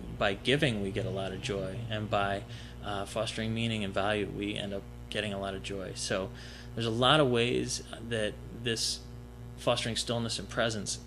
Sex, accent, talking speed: male, American, 190 wpm